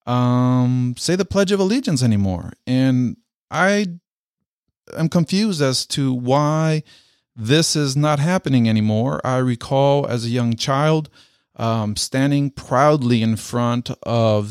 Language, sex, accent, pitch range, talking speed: English, male, American, 110-140 Hz, 130 wpm